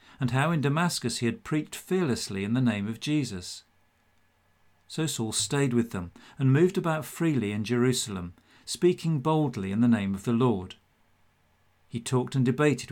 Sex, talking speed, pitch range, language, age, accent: male, 165 wpm, 95-130 Hz, English, 50-69, British